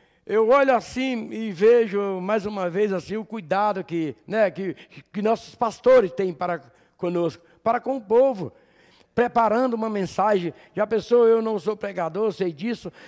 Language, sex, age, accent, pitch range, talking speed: Portuguese, male, 60-79, Brazilian, 170-225 Hz, 160 wpm